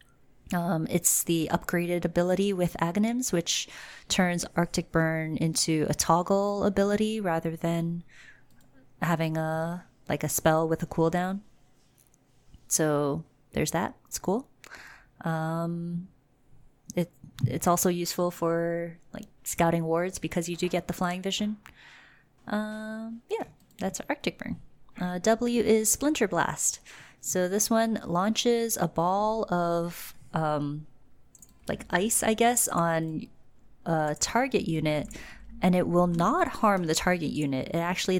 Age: 20-39